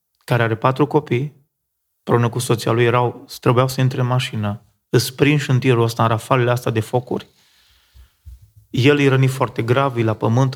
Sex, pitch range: male, 110-130 Hz